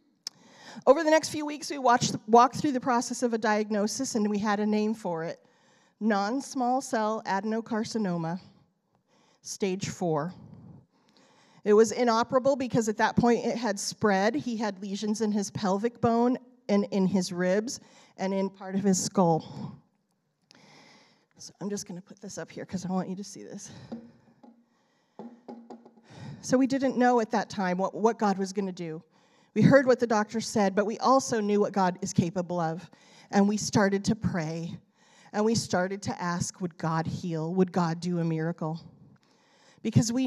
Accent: American